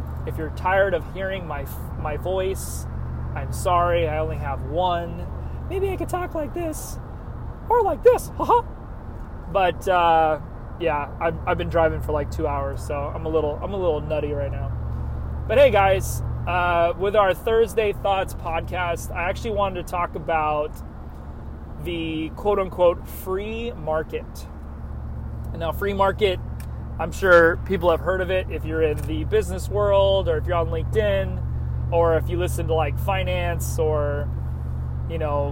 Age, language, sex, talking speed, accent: 30-49, English, male, 160 wpm, American